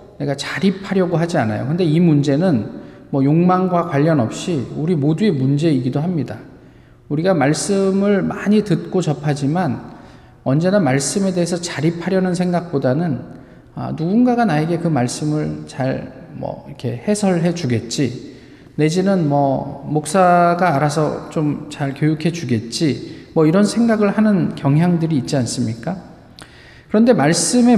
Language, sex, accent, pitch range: Korean, male, native, 130-175 Hz